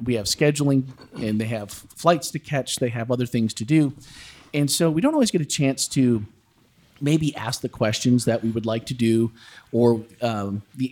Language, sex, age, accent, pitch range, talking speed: English, male, 40-59, American, 115-140 Hz, 205 wpm